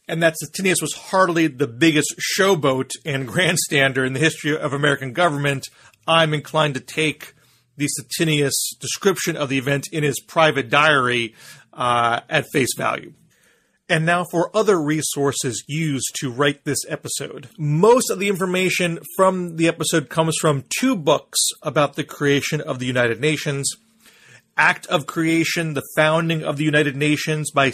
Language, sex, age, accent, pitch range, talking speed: English, male, 40-59, American, 135-165 Hz, 155 wpm